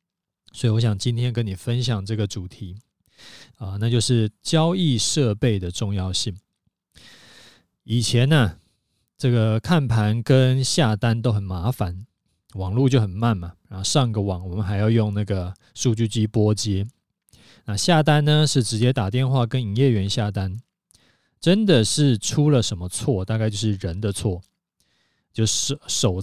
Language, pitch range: Chinese, 105-130 Hz